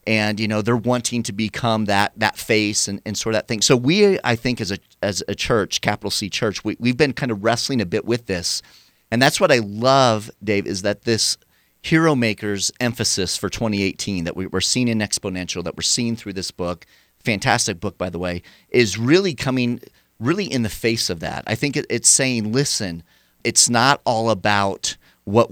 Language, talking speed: English, 210 wpm